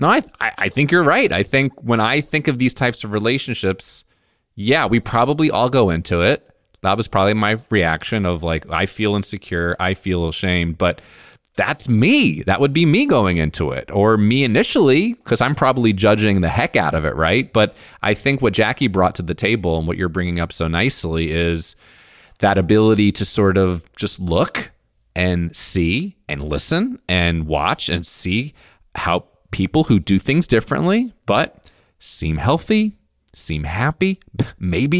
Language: English